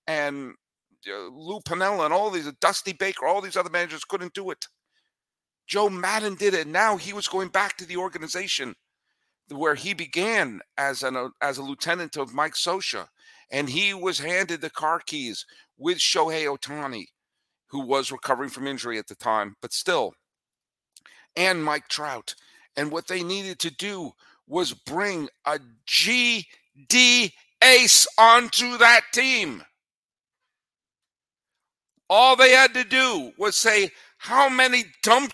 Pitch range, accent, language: 155-225 Hz, American, English